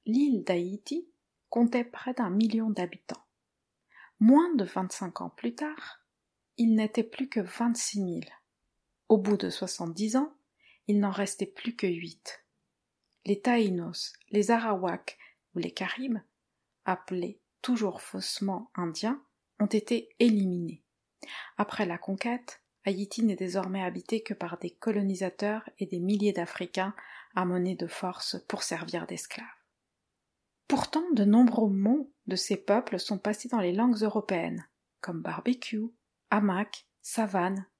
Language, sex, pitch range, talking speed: French, female, 185-235 Hz, 130 wpm